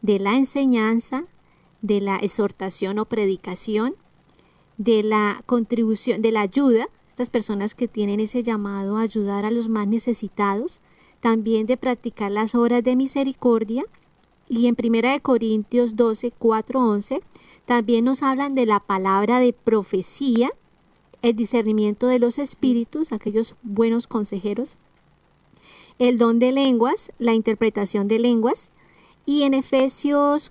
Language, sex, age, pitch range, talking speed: Spanish, female, 40-59, 210-245 Hz, 130 wpm